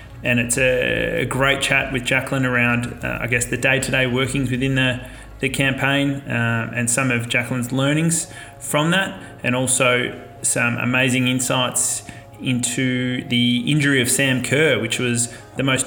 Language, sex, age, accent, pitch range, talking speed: English, male, 20-39, Australian, 120-135 Hz, 155 wpm